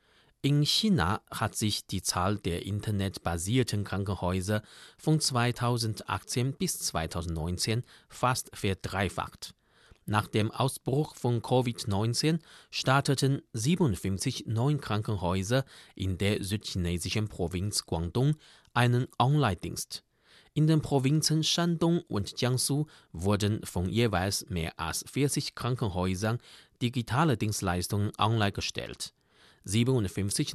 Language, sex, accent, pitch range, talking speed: German, male, German, 95-130 Hz, 95 wpm